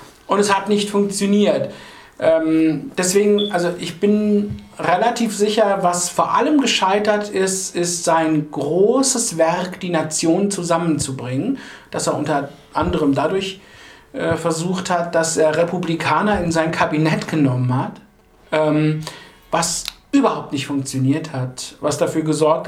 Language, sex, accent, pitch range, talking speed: English, male, German, 150-190 Hz, 130 wpm